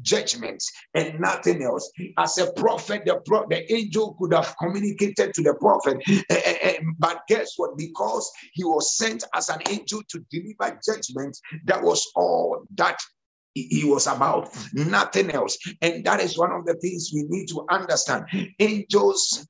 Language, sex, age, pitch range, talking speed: English, male, 50-69, 170-230 Hz, 165 wpm